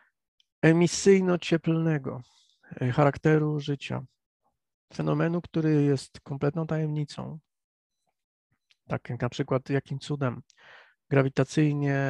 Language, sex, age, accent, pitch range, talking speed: Polish, male, 40-59, native, 135-160 Hz, 75 wpm